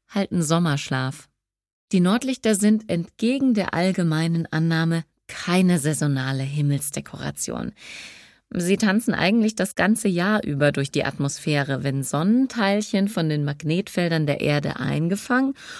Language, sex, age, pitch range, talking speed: German, female, 30-49, 150-215 Hz, 115 wpm